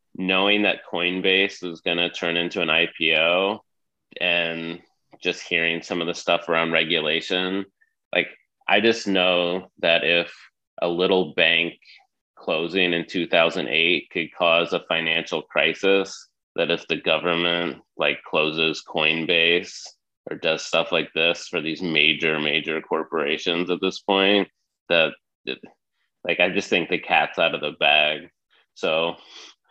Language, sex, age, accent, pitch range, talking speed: English, male, 30-49, American, 85-95 Hz, 135 wpm